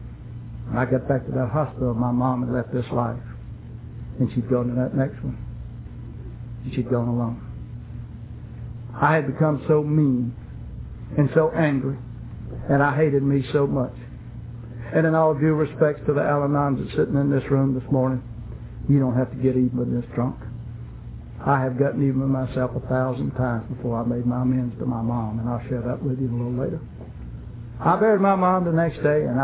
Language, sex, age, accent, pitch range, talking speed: English, male, 60-79, American, 120-140 Hz, 195 wpm